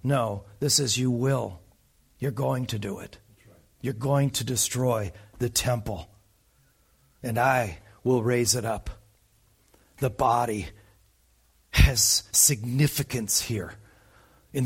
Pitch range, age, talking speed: 115-185 Hz, 40-59, 115 wpm